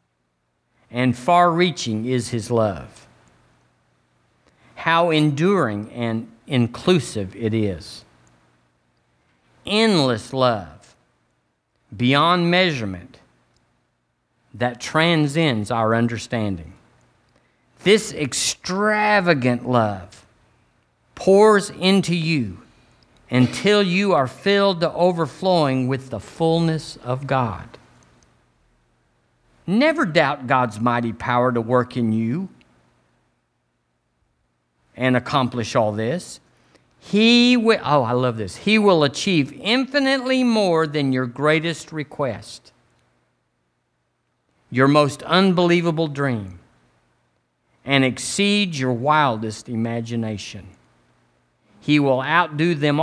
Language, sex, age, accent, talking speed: English, male, 50-69, American, 85 wpm